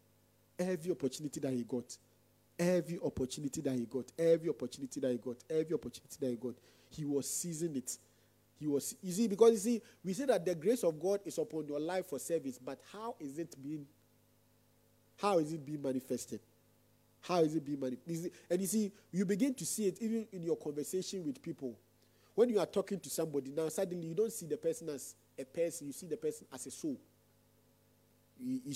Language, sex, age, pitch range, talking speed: English, male, 40-59, 125-190 Hz, 200 wpm